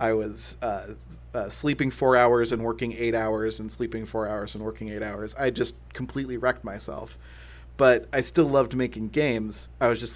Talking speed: 195 wpm